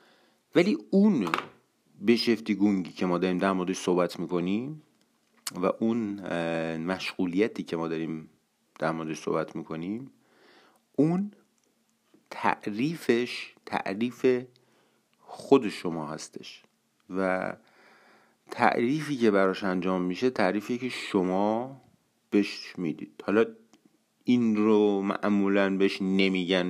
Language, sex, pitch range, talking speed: Persian, male, 95-120 Hz, 90 wpm